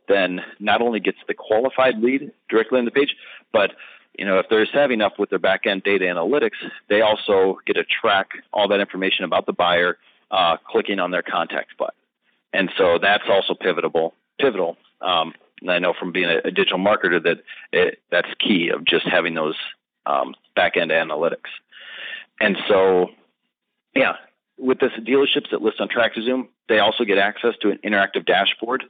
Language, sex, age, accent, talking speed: English, male, 40-59, American, 185 wpm